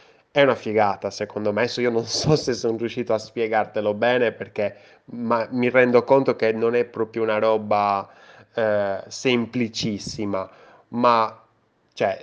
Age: 20-39